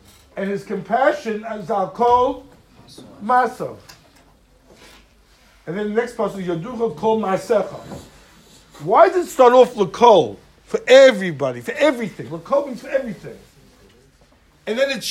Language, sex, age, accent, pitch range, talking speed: English, male, 60-79, American, 185-245 Hz, 120 wpm